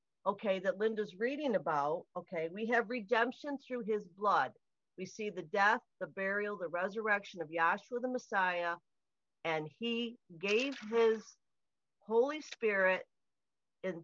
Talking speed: 130 wpm